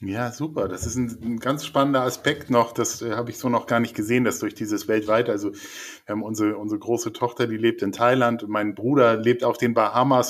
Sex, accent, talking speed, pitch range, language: male, German, 225 wpm, 115-135 Hz, German